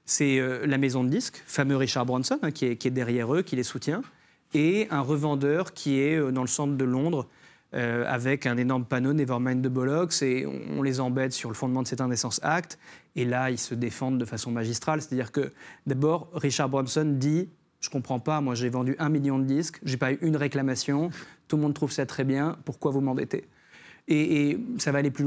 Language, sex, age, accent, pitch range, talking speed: French, male, 30-49, French, 125-155 Hz, 230 wpm